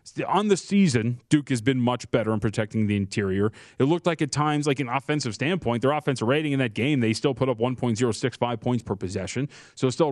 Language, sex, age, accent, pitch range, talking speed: English, male, 30-49, American, 115-145 Hz, 225 wpm